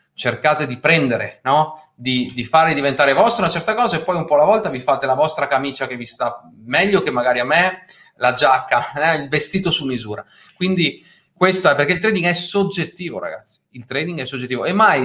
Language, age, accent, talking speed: Italian, 30-49, native, 210 wpm